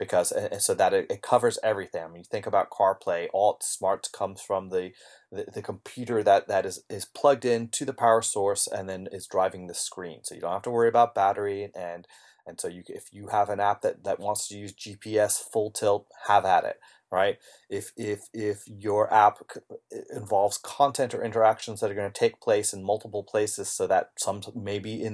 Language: English